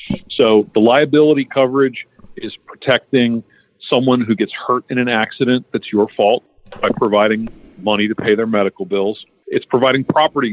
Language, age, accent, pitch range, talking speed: English, 40-59, American, 105-135 Hz, 155 wpm